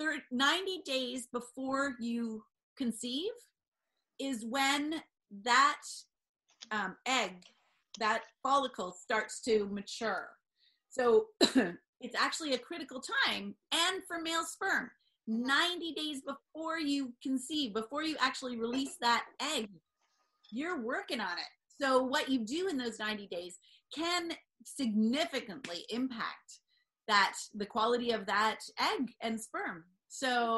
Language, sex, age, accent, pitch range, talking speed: English, female, 30-49, American, 230-295 Hz, 120 wpm